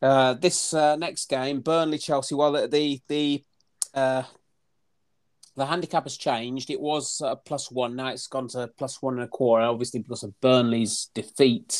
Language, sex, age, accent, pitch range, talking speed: English, male, 30-49, British, 125-145 Hz, 175 wpm